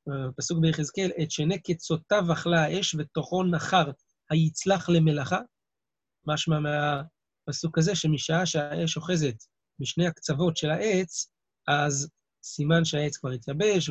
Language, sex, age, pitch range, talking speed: Hebrew, male, 30-49, 145-170 Hz, 110 wpm